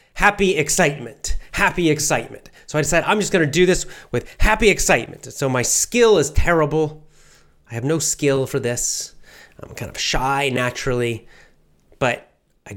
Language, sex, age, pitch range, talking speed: English, male, 30-49, 130-165 Hz, 160 wpm